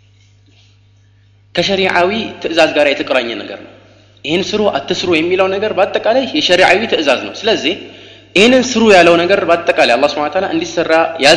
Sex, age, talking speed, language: male, 30-49, 105 wpm, Amharic